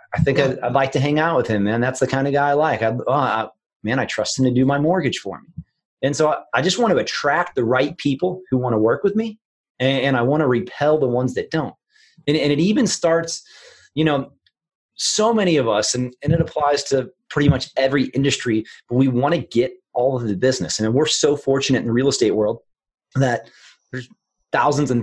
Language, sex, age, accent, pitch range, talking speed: English, male, 30-49, American, 130-165 Hz, 225 wpm